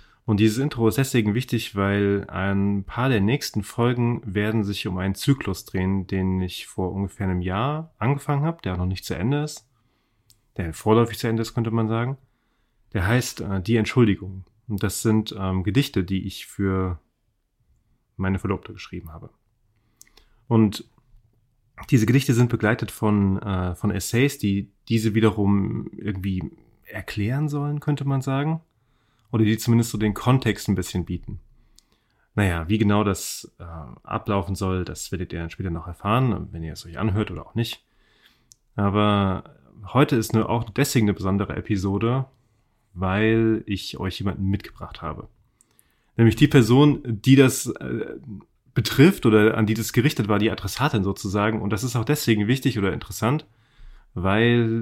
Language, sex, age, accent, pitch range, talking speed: German, male, 30-49, German, 100-120 Hz, 160 wpm